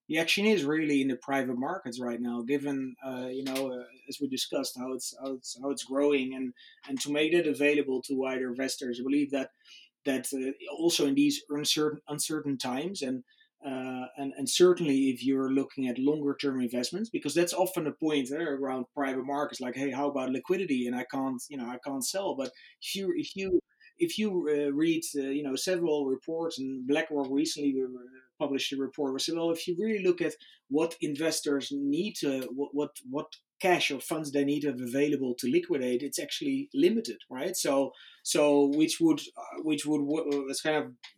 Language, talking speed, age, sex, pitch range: English, 205 wpm, 20-39, male, 130-165 Hz